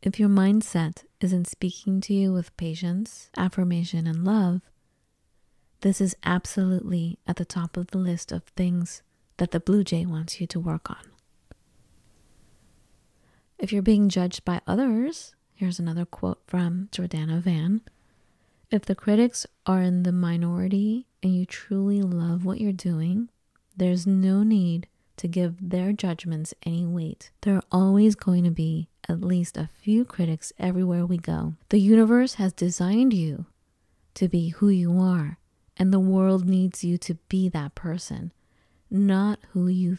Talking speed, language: 155 wpm, English